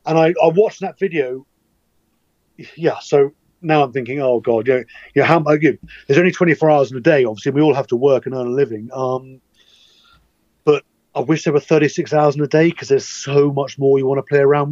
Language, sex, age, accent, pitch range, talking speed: English, male, 30-49, British, 130-155 Hz, 235 wpm